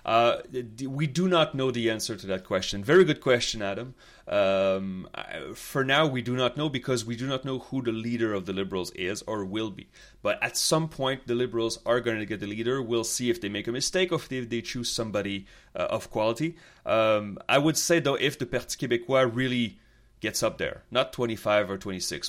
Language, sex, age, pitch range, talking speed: English, male, 30-49, 100-130 Hz, 215 wpm